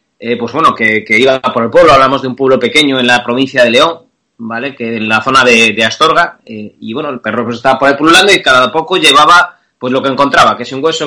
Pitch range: 120-155 Hz